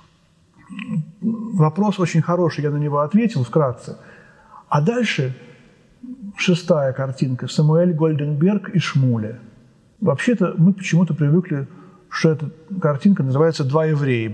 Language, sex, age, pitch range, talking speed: Russian, male, 40-59, 135-180 Hz, 110 wpm